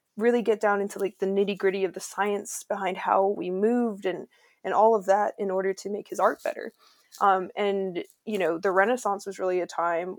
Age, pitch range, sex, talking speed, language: 20-39, 190-210 Hz, female, 220 wpm, English